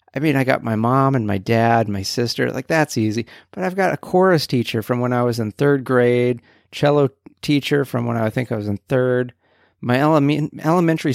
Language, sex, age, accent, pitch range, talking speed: English, male, 40-59, American, 105-130 Hz, 210 wpm